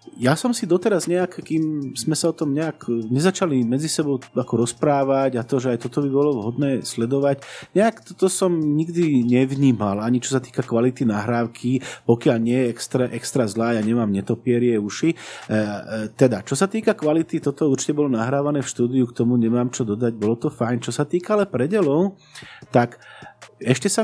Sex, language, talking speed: male, Slovak, 180 wpm